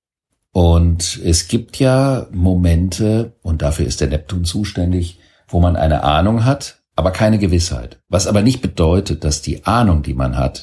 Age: 50-69